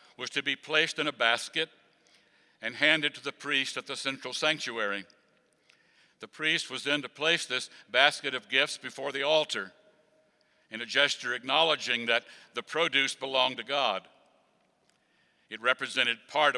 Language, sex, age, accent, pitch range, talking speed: English, male, 60-79, American, 120-155 Hz, 150 wpm